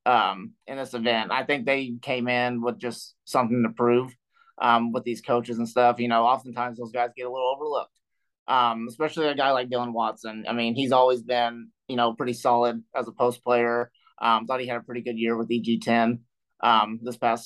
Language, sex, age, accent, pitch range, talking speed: English, male, 30-49, American, 115-130 Hz, 215 wpm